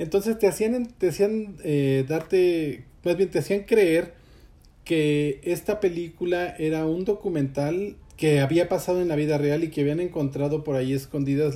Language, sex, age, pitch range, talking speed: Spanish, male, 40-59, 135-180 Hz, 165 wpm